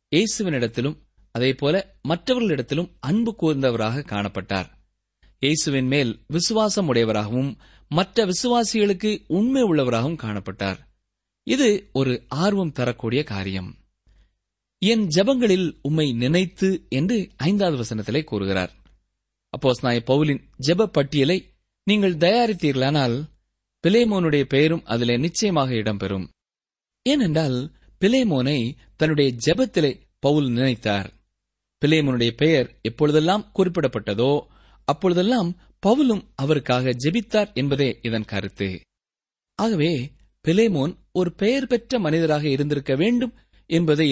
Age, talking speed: 30-49, 85 wpm